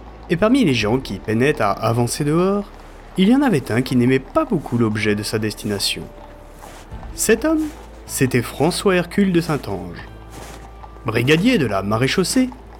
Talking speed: 155 wpm